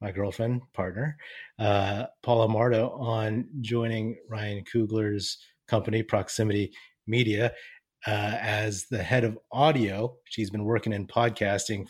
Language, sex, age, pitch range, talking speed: English, male, 30-49, 105-125 Hz, 120 wpm